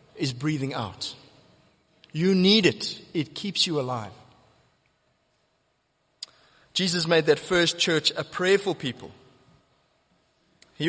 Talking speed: 105 wpm